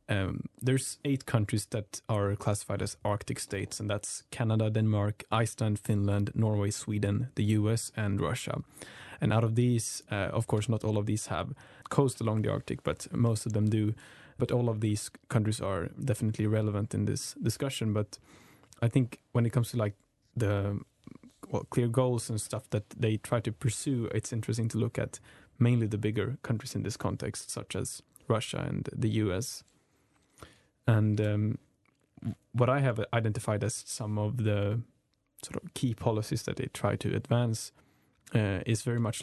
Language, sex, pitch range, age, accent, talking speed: English, male, 105-125 Hz, 20-39, Norwegian, 175 wpm